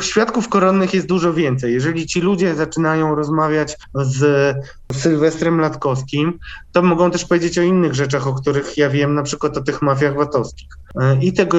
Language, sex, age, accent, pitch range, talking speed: Polish, male, 20-39, native, 145-175 Hz, 165 wpm